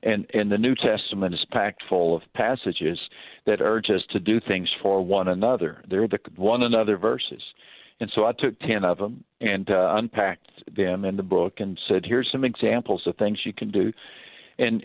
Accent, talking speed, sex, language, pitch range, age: American, 200 wpm, male, English, 105-125 Hz, 50-69